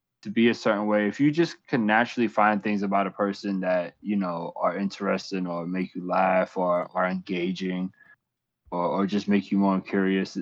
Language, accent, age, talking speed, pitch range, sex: English, American, 20-39, 195 wpm, 100-140 Hz, male